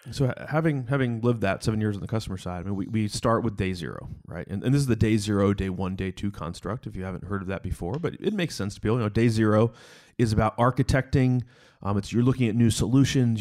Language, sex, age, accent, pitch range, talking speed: English, male, 30-49, American, 105-125 Hz, 270 wpm